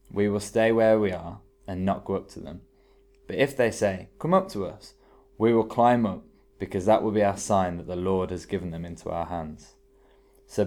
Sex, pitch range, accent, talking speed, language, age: male, 85-110 Hz, British, 225 wpm, English, 20-39